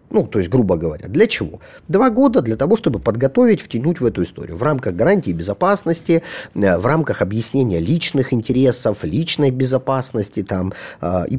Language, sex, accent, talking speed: Russian, male, native, 160 wpm